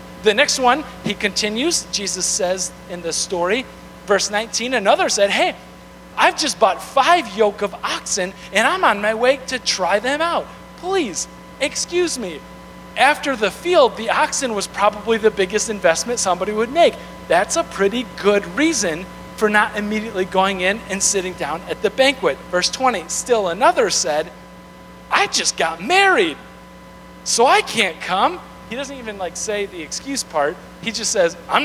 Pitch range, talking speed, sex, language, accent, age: 180-245 Hz, 165 wpm, male, English, American, 40-59